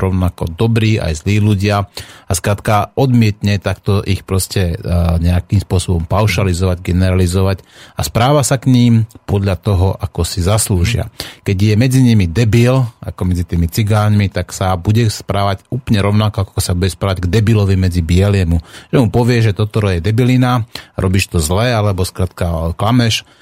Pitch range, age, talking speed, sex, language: 95-115 Hz, 30-49, 155 wpm, male, Slovak